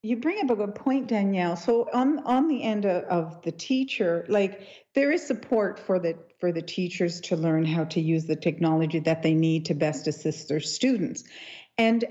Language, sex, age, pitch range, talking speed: English, female, 50-69, 175-240 Hz, 205 wpm